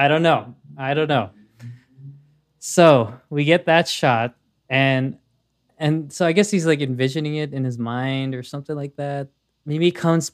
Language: English